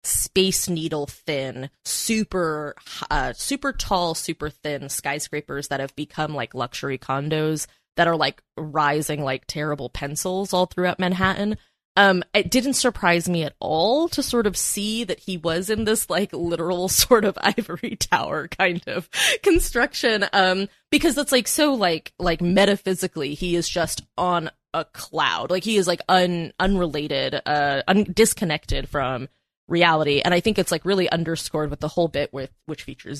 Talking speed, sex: 165 wpm, female